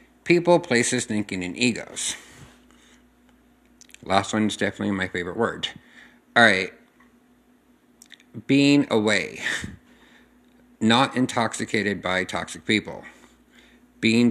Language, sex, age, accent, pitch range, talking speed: English, male, 50-69, American, 100-130 Hz, 90 wpm